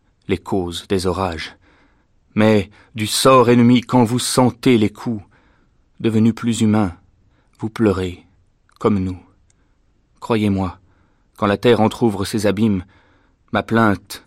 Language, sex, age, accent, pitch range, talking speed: French, male, 30-49, French, 95-115 Hz, 120 wpm